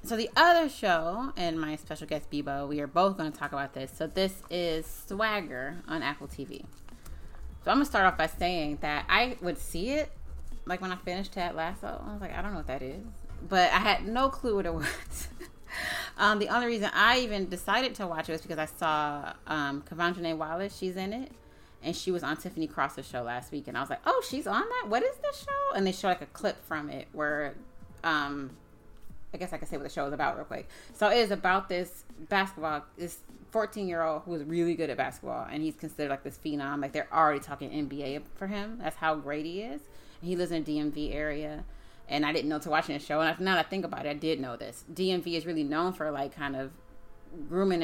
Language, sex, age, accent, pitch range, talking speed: English, female, 30-49, American, 145-185 Hz, 240 wpm